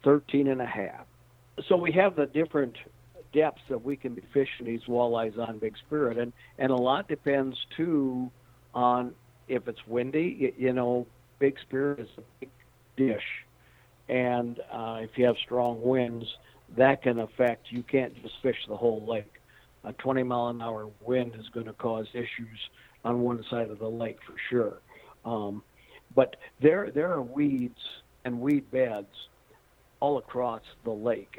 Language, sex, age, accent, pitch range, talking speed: English, male, 60-79, American, 120-135 Hz, 165 wpm